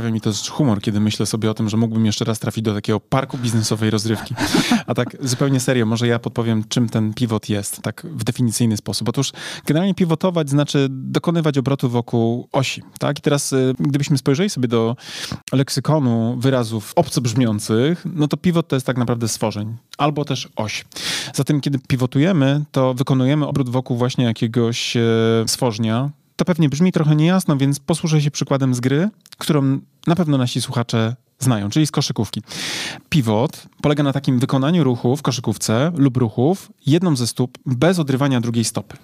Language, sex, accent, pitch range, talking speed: Polish, male, native, 115-150 Hz, 175 wpm